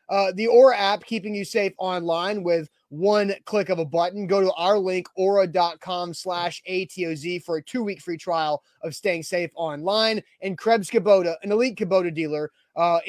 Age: 20-39